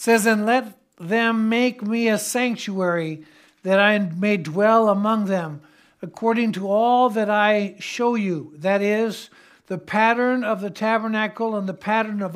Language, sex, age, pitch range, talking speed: English, male, 60-79, 195-235 Hz, 155 wpm